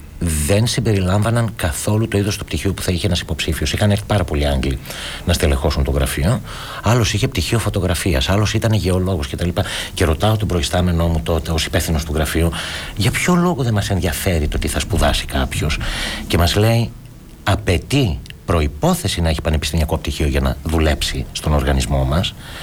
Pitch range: 80-110 Hz